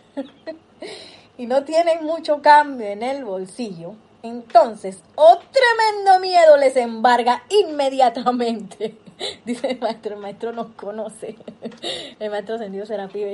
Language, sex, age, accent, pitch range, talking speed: Spanish, female, 30-49, American, 220-295 Hz, 125 wpm